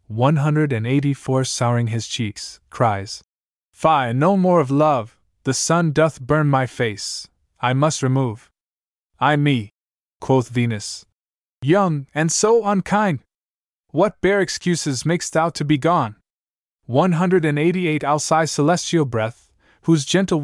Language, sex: English, male